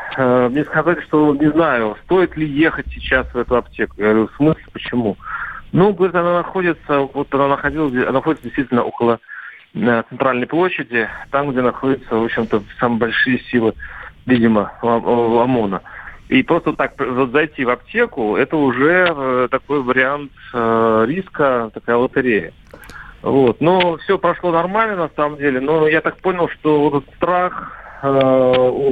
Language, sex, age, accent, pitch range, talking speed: Russian, male, 40-59, native, 125-155 Hz, 150 wpm